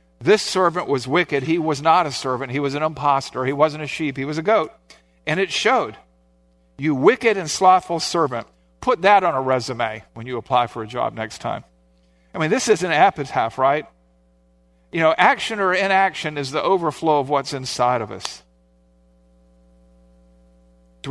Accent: American